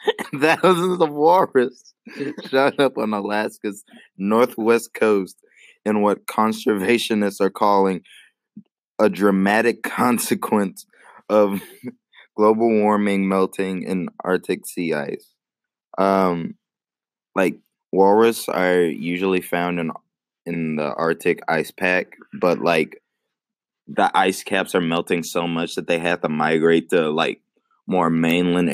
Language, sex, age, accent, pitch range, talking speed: English, male, 20-39, American, 85-105 Hz, 115 wpm